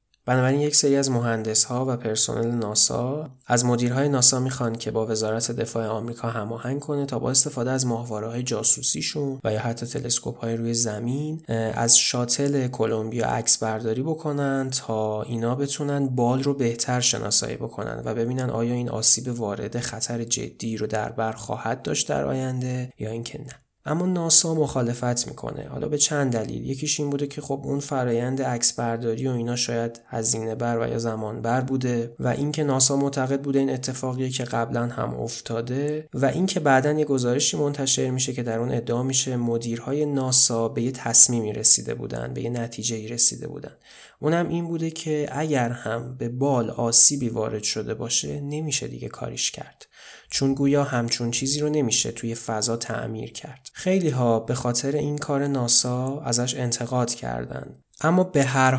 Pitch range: 115-140 Hz